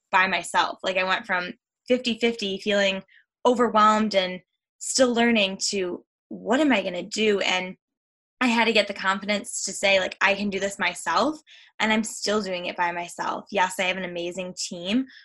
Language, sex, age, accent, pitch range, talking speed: English, female, 10-29, American, 185-225 Hz, 190 wpm